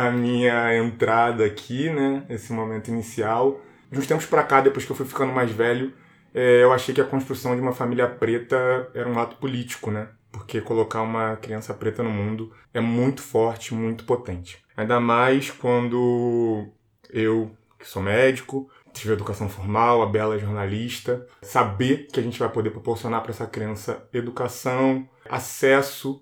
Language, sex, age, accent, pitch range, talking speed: Portuguese, male, 20-39, Brazilian, 115-135 Hz, 165 wpm